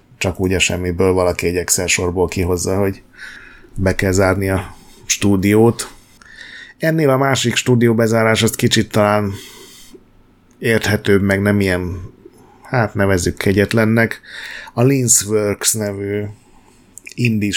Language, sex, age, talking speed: Hungarian, male, 30-49, 115 wpm